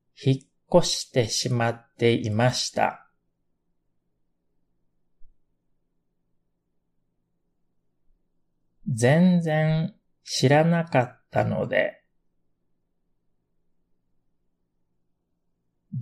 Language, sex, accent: Japanese, male, native